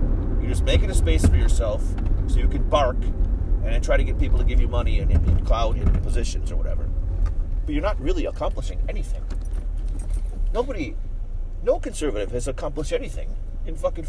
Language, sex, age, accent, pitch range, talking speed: English, male, 40-59, American, 80-90 Hz, 170 wpm